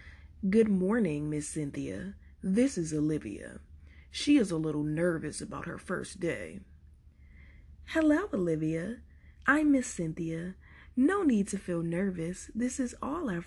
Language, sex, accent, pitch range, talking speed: English, female, American, 150-240 Hz, 135 wpm